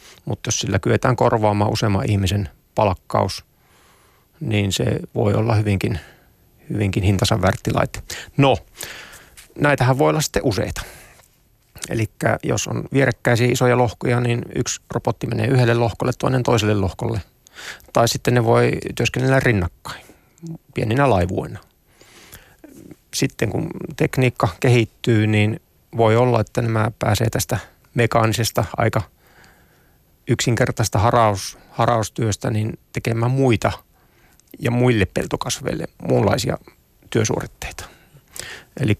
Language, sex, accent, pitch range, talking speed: Finnish, male, native, 100-125 Hz, 105 wpm